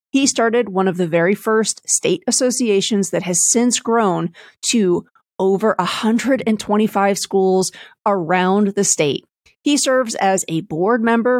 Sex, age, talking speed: female, 40-59, 135 wpm